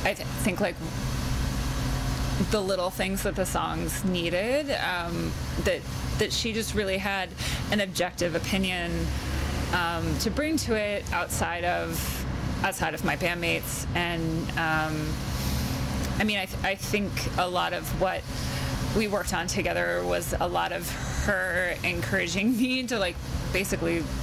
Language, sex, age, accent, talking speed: English, female, 20-39, American, 145 wpm